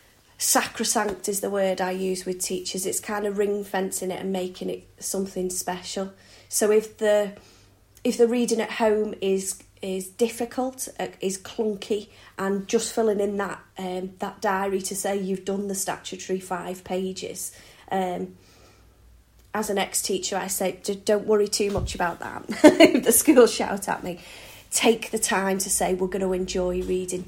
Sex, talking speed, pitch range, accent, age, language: female, 165 wpm, 185-215 Hz, British, 30-49, English